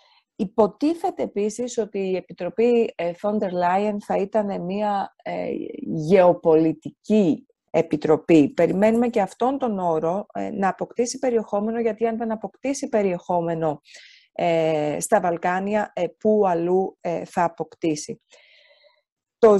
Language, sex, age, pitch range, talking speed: Greek, female, 30-49, 170-220 Hz, 100 wpm